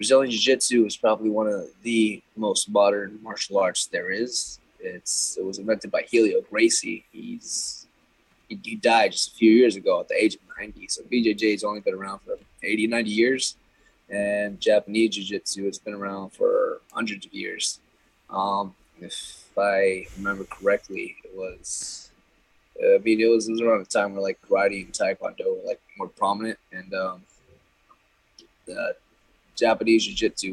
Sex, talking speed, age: male, 160 wpm, 20-39